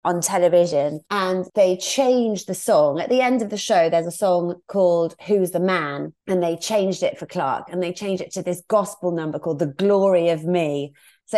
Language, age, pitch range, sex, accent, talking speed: English, 30-49, 165-215 Hz, female, British, 210 wpm